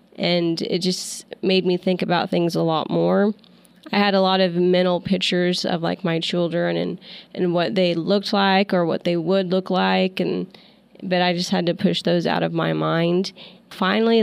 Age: 20-39